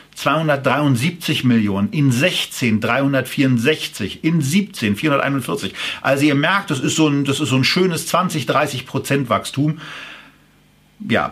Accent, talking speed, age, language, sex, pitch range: German, 115 wpm, 50-69, German, male, 115-140 Hz